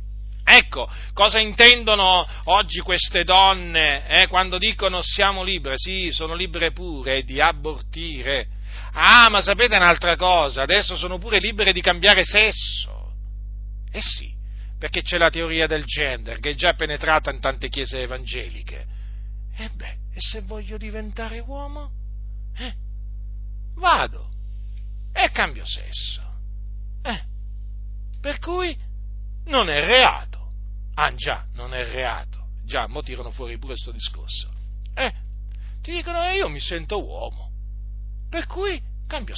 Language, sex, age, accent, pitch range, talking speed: Italian, male, 40-59, native, 100-165 Hz, 135 wpm